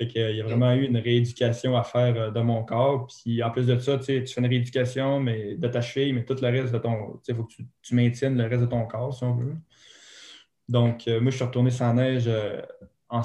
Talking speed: 260 wpm